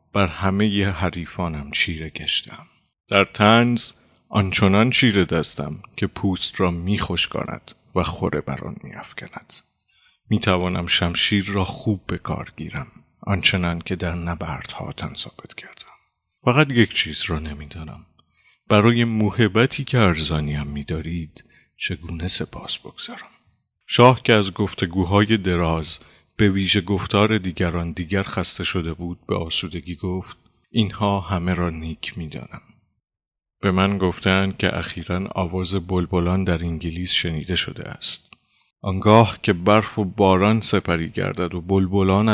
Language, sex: Persian, male